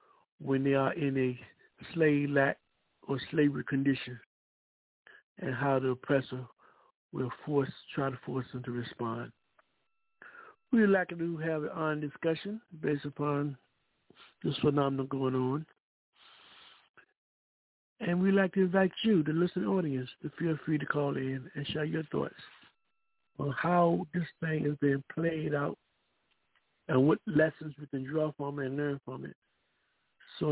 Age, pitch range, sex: 60-79, 135-175 Hz, male